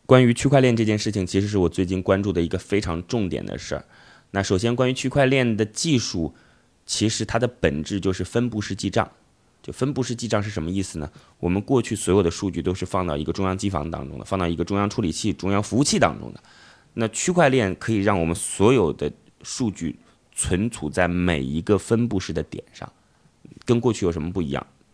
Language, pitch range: Chinese, 90-120 Hz